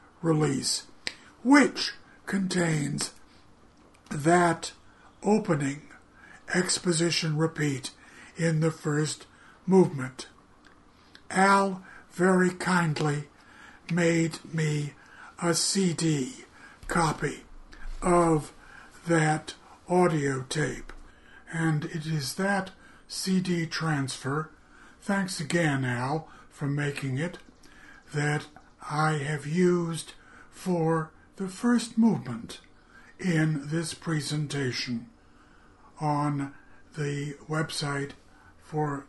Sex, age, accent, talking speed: male, 60-79, American, 75 wpm